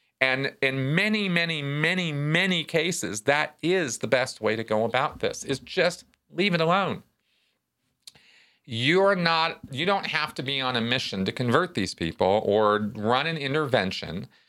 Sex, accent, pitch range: male, American, 120-170 Hz